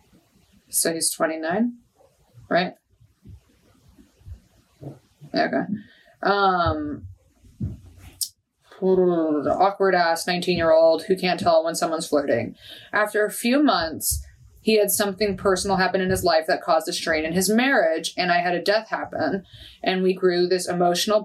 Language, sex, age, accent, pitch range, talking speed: English, female, 20-39, American, 165-200 Hz, 120 wpm